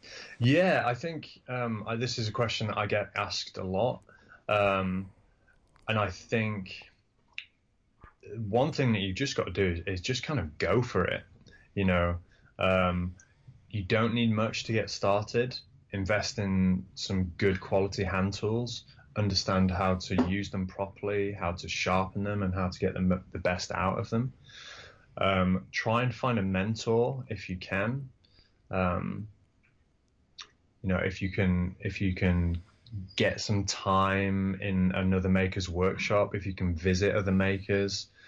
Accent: British